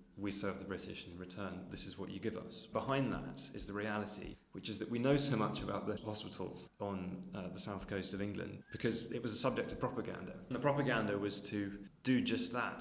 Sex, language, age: male, English, 20-39